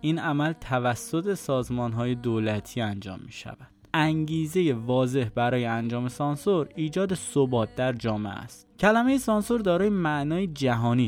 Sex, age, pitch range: male, 20-39, 115-155 Hz